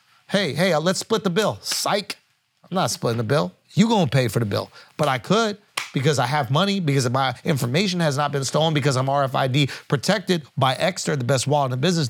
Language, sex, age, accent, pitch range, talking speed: English, male, 30-49, American, 120-170 Hz, 225 wpm